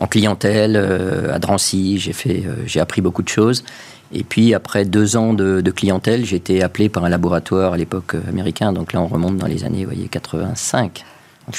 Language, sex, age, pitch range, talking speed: French, male, 40-59, 95-115 Hz, 215 wpm